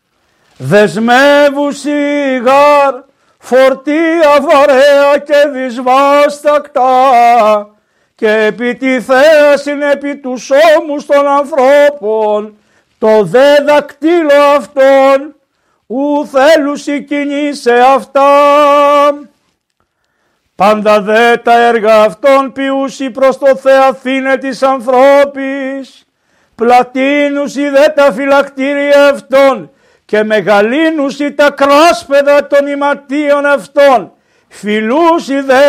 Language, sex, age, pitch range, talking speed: Greek, male, 50-69, 260-285 Hz, 80 wpm